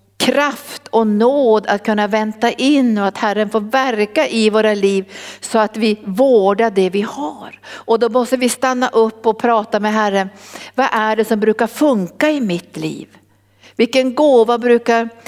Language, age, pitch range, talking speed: Swedish, 60-79, 205-260 Hz, 175 wpm